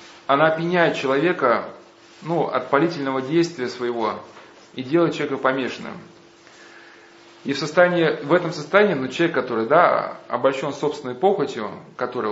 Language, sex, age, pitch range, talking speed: Russian, male, 20-39, 130-165 Hz, 125 wpm